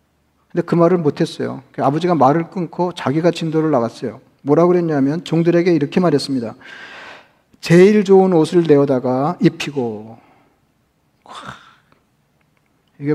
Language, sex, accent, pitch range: Korean, male, native, 140-175 Hz